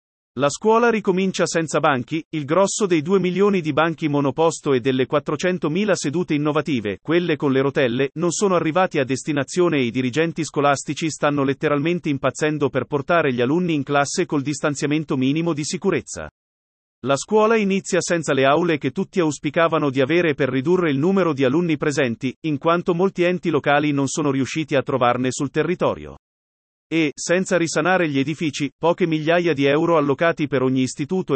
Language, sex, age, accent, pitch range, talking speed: Italian, male, 40-59, native, 140-170 Hz, 170 wpm